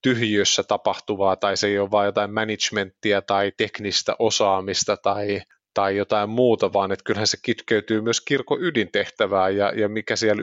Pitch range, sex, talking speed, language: 100-110 Hz, male, 155 wpm, Finnish